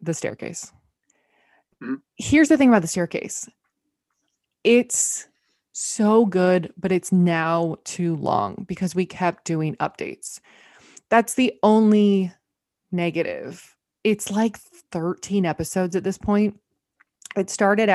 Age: 20-39